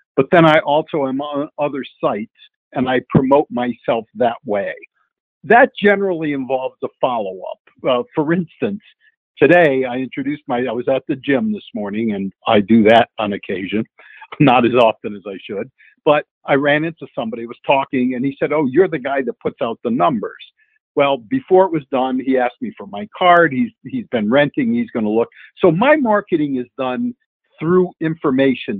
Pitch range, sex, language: 130-195 Hz, male, English